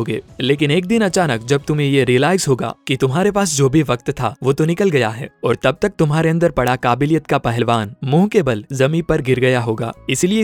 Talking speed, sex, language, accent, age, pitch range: 215 wpm, male, Hindi, native, 20-39, 125-165 Hz